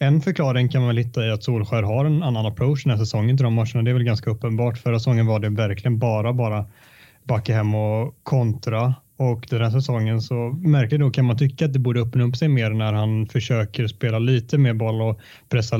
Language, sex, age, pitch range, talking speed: Swedish, male, 20-39, 110-125 Hz, 235 wpm